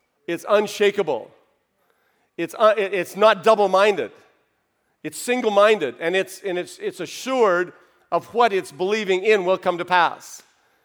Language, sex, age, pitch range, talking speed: English, male, 50-69, 150-195 Hz, 135 wpm